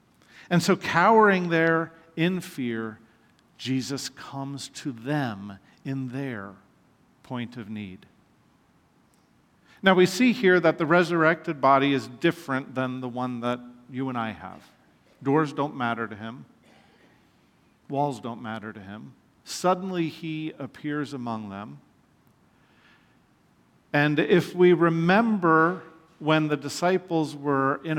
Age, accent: 50-69, American